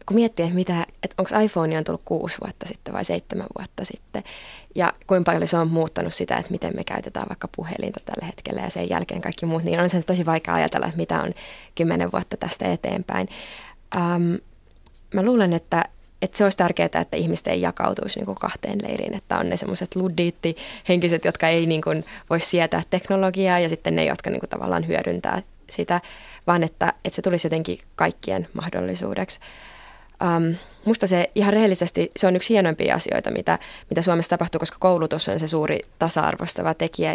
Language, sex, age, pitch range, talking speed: Finnish, female, 20-39, 160-185 Hz, 180 wpm